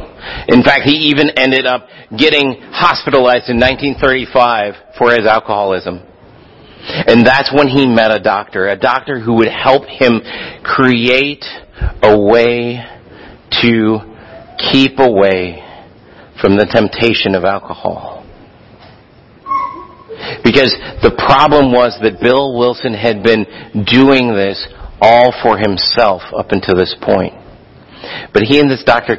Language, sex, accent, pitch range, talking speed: English, male, American, 115-170 Hz, 125 wpm